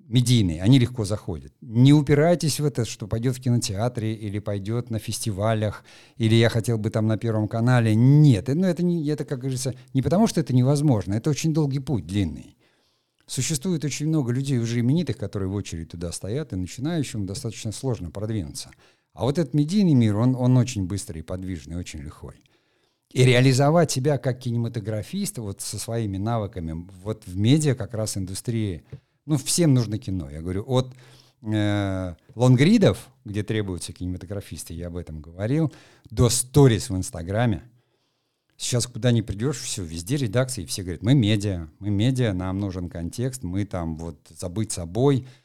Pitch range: 100-135 Hz